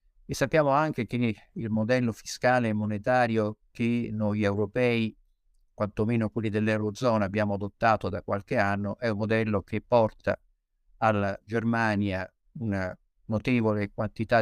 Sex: male